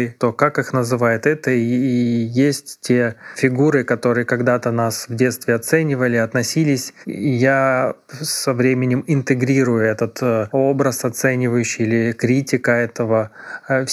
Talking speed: 120 wpm